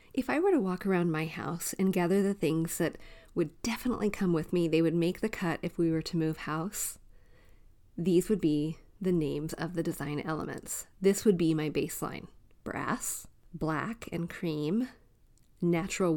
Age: 30-49